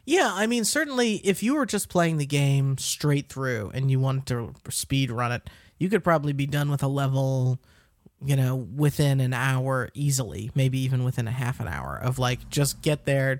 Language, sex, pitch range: English, male, 130-155 Hz